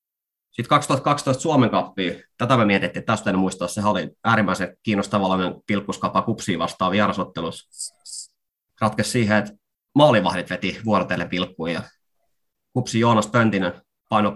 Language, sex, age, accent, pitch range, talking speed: Finnish, male, 30-49, native, 100-120 Hz, 130 wpm